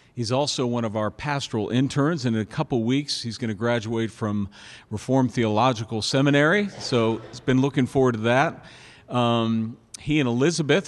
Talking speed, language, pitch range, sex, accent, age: 165 wpm, English, 115-135 Hz, male, American, 50-69